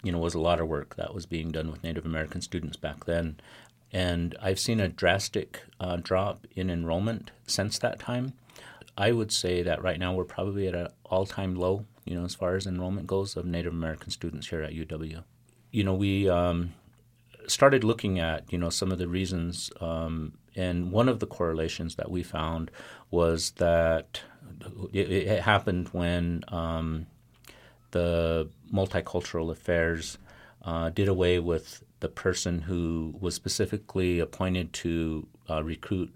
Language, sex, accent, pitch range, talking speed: English, male, American, 80-100 Hz, 165 wpm